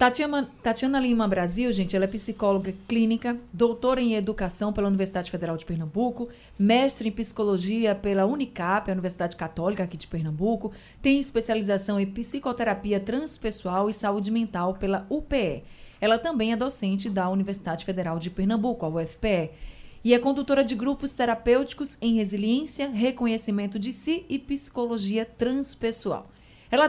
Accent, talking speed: Brazilian, 145 wpm